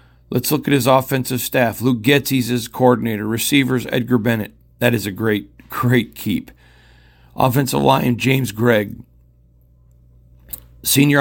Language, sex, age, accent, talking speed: English, male, 50-69, American, 135 wpm